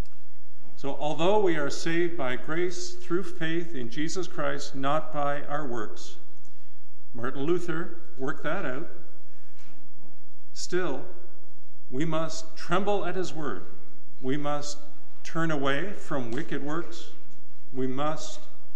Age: 50-69